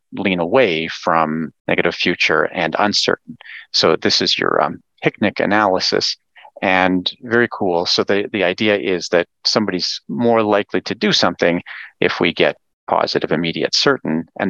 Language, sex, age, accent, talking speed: English, male, 40-59, American, 150 wpm